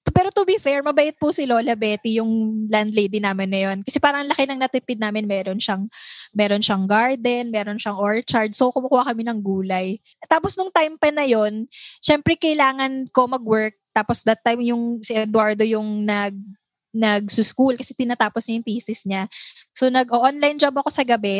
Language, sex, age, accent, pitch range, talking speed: English, female, 20-39, Filipino, 220-280 Hz, 185 wpm